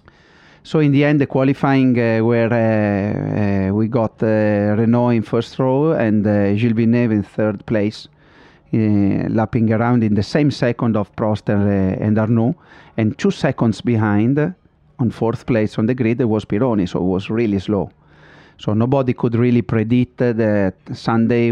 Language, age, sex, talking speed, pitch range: English, 30-49, male, 175 wpm, 105-120 Hz